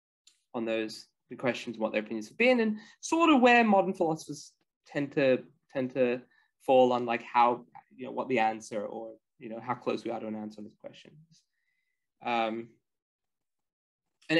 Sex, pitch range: male, 115-140 Hz